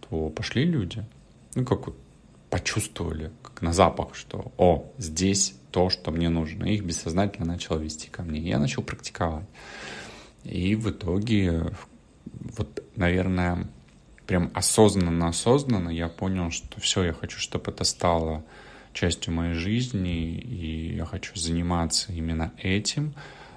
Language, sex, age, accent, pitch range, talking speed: Russian, male, 30-49, native, 80-100 Hz, 125 wpm